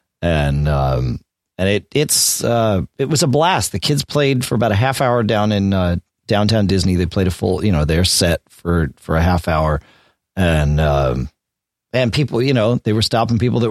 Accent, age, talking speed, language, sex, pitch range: American, 40-59, 205 wpm, English, male, 90-130 Hz